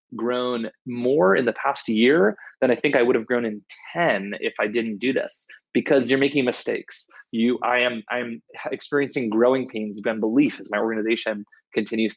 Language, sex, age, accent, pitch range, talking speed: English, male, 20-39, American, 110-130 Hz, 185 wpm